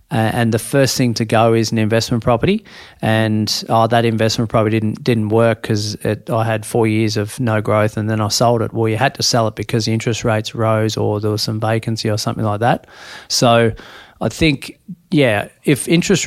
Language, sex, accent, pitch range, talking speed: English, male, Australian, 110-125 Hz, 210 wpm